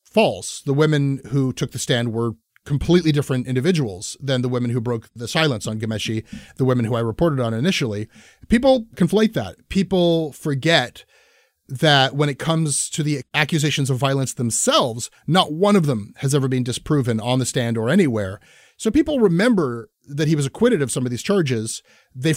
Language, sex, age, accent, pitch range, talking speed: English, male, 30-49, American, 125-165 Hz, 180 wpm